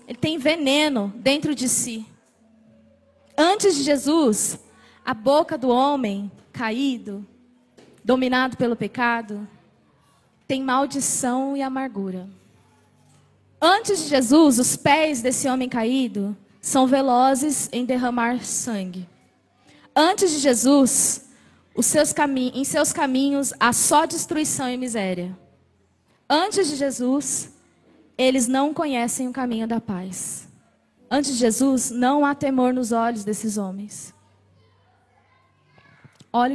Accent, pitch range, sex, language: Brazilian, 225-290 Hz, female, Portuguese